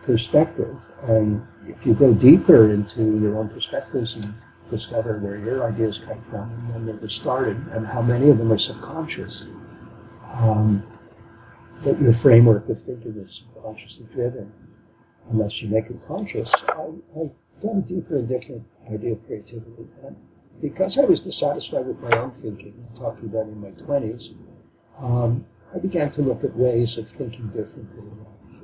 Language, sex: English, male